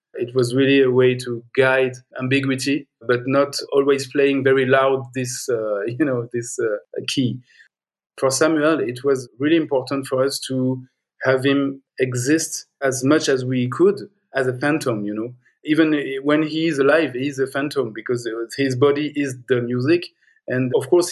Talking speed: 175 wpm